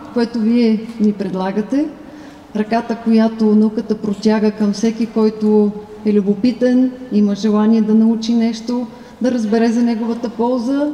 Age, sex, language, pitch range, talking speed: 30-49, female, Bulgarian, 205-235 Hz, 125 wpm